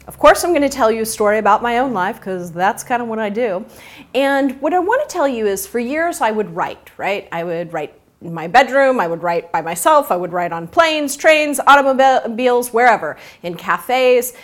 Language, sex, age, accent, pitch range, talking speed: English, female, 30-49, American, 185-265 Hz, 230 wpm